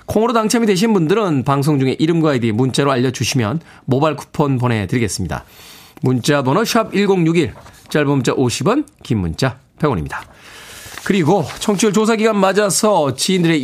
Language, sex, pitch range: Korean, male, 135-180 Hz